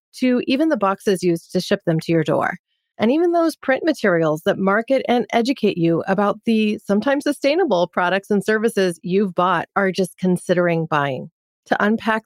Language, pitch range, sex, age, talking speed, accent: English, 180-240 Hz, female, 30-49, 175 wpm, American